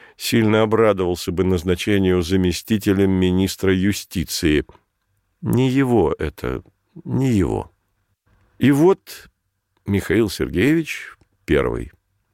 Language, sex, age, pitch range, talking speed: Russian, male, 50-69, 100-125 Hz, 85 wpm